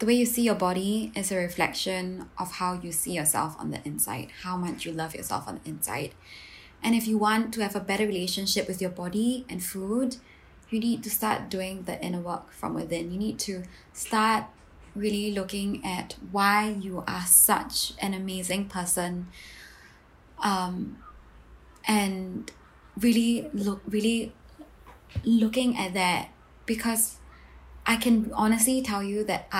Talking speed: 160 wpm